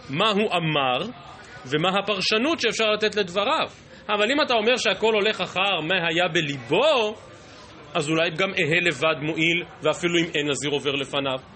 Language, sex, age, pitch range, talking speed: Hebrew, male, 30-49, 145-200 Hz, 155 wpm